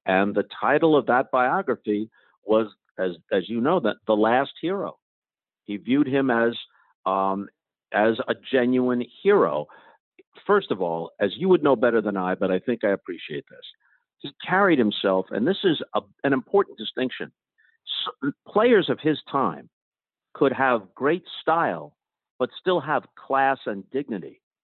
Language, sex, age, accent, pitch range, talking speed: English, male, 50-69, American, 110-165 Hz, 155 wpm